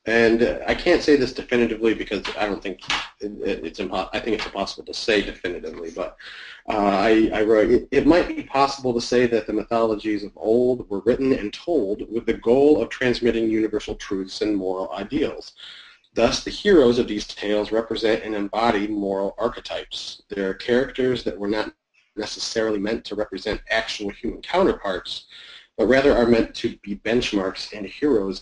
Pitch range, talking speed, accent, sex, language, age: 100-120 Hz, 175 wpm, American, male, English, 30-49